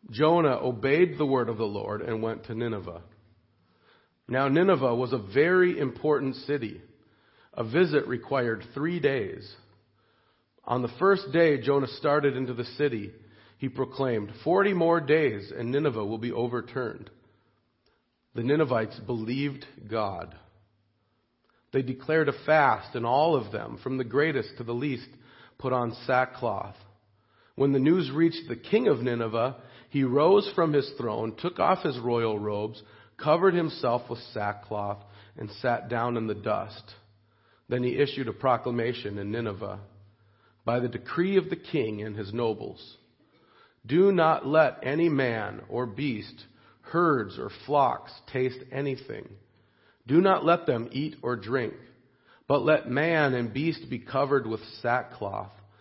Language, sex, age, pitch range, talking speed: English, male, 40-59, 110-140 Hz, 145 wpm